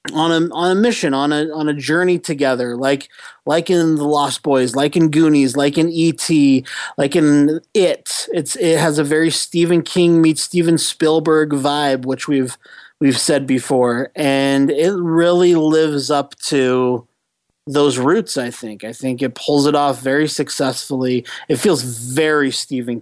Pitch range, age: 130-155 Hz, 30-49